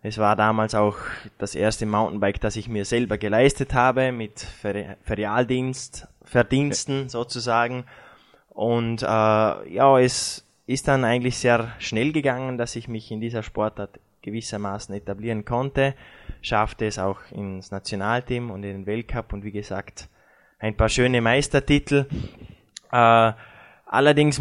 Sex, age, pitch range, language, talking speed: male, 20-39, 105-120 Hz, German, 135 wpm